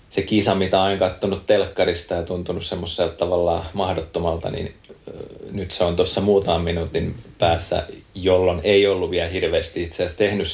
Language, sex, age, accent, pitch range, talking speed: Finnish, male, 30-49, native, 85-100 Hz, 155 wpm